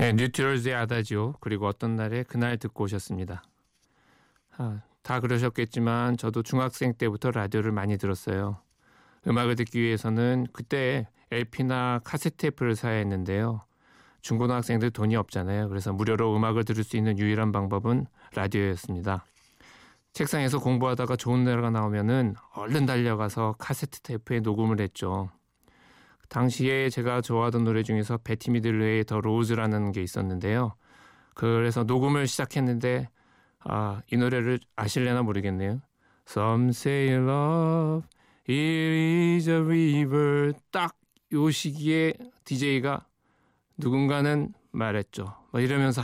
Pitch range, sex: 110-130 Hz, male